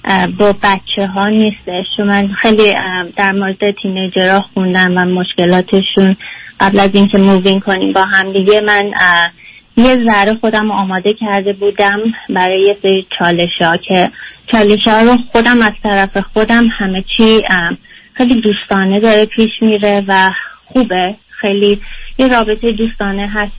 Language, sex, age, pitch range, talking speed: Persian, female, 20-39, 190-215 Hz, 135 wpm